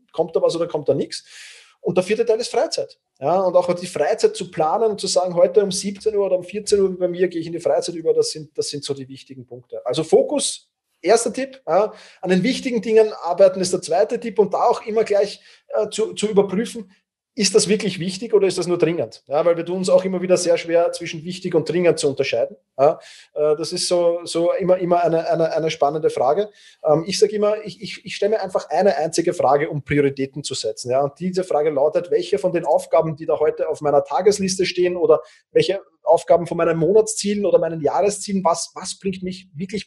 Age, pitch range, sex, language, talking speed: 30-49, 160-210 Hz, male, German, 225 wpm